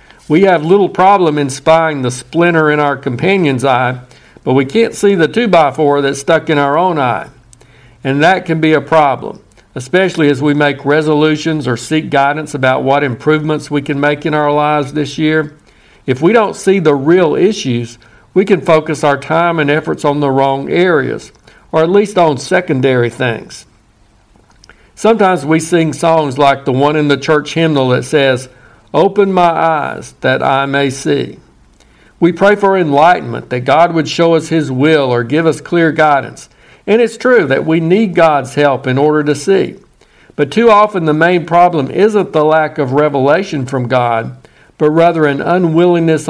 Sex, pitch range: male, 135-165 Hz